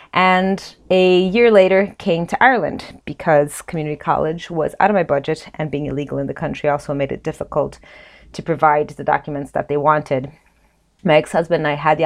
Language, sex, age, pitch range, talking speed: English, female, 30-49, 145-170 Hz, 190 wpm